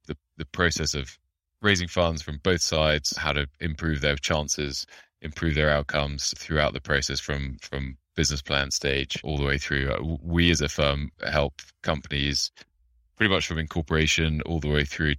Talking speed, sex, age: 165 wpm, male, 20-39